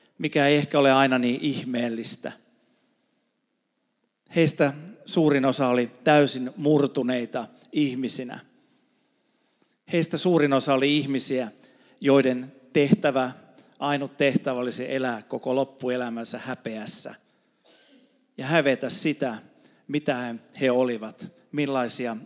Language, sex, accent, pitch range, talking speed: Finnish, male, native, 125-155 Hz, 95 wpm